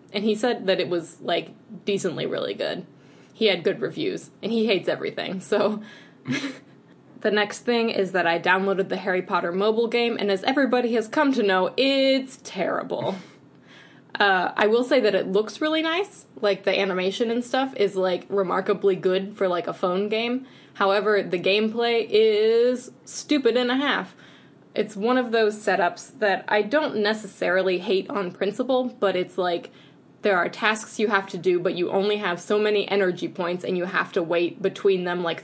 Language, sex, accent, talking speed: English, female, American, 185 wpm